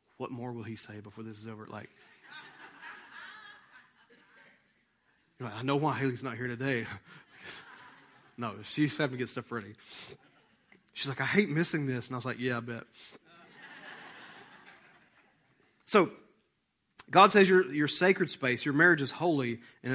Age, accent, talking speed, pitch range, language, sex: 30-49, American, 145 wpm, 130-195 Hz, English, male